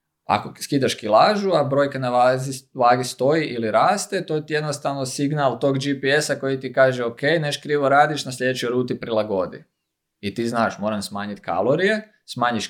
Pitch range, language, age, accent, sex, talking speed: 105-135 Hz, Croatian, 20-39, native, male, 170 wpm